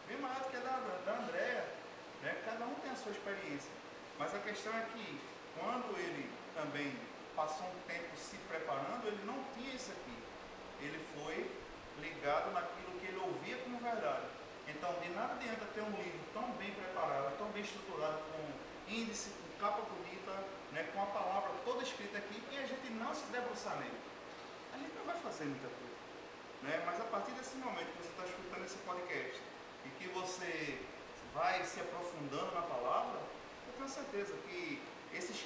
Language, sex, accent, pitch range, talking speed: Portuguese, male, Brazilian, 165-225 Hz, 180 wpm